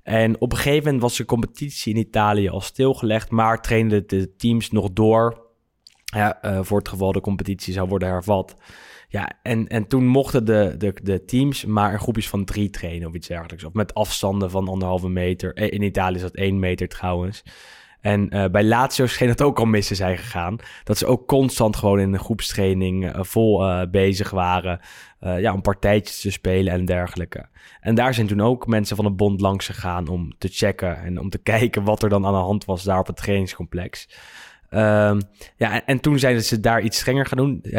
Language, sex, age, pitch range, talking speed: Dutch, male, 20-39, 95-115 Hz, 210 wpm